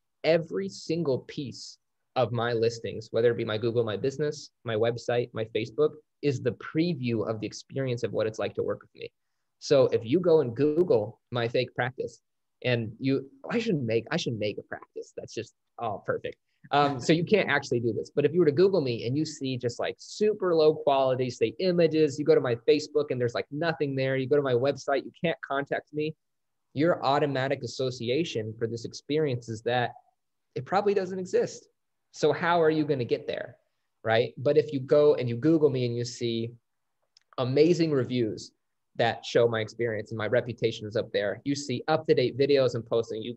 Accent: American